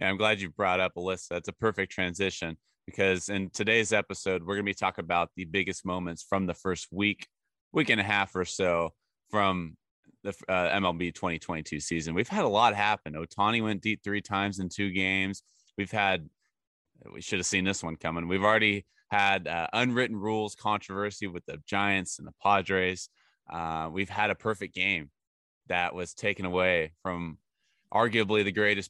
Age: 20-39